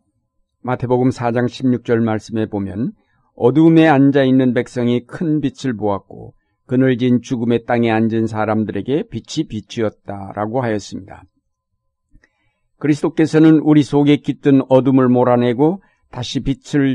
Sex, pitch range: male, 115-150 Hz